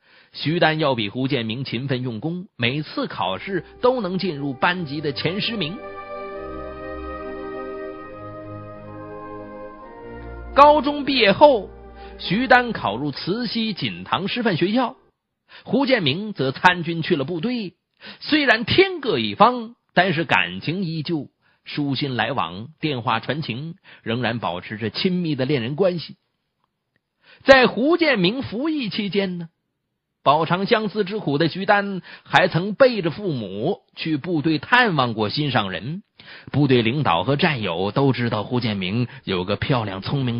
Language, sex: Chinese, male